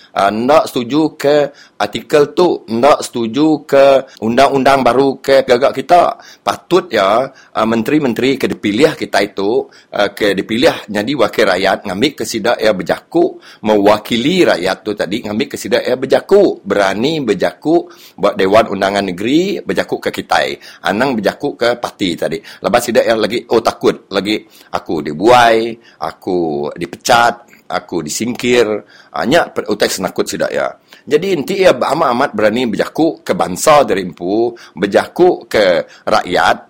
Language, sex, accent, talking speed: English, male, Indonesian, 130 wpm